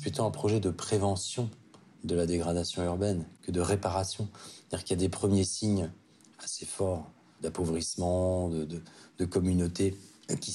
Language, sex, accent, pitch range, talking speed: French, male, French, 90-110 Hz, 155 wpm